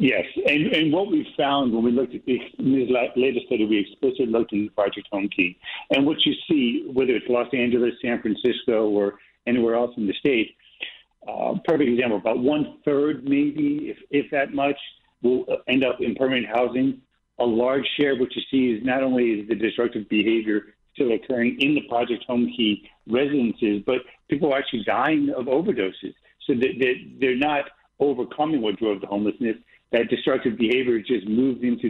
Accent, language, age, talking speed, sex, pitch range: American, English, 60-79, 180 wpm, male, 110-135 Hz